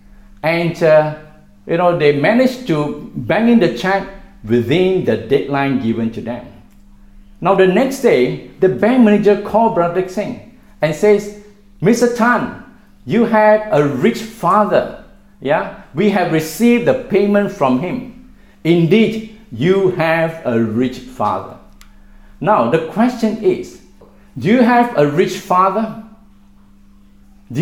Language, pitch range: English, 125-210 Hz